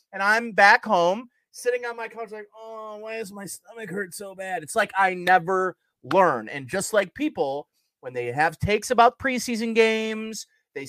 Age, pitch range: 30-49, 180-235 Hz